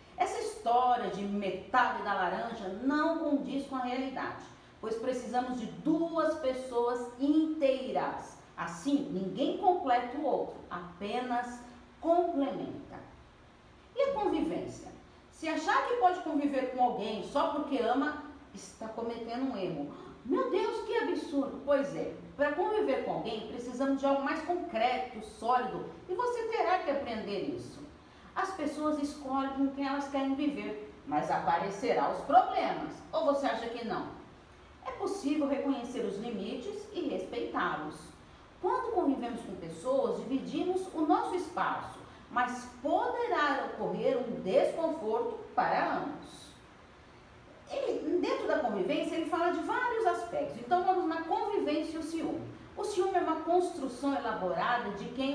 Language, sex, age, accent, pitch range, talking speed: Portuguese, female, 40-59, Brazilian, 245-345 Hz, 135 wpm